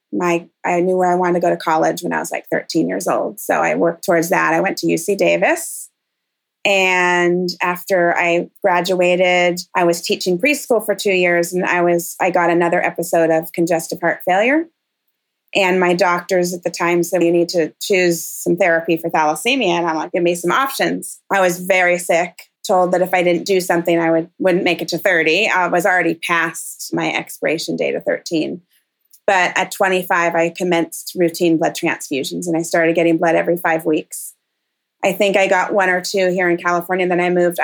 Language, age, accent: English, 20-39, American